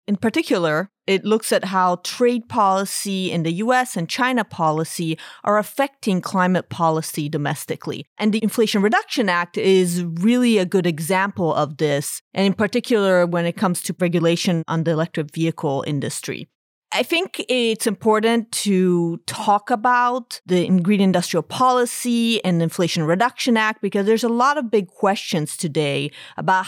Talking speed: 155 wpm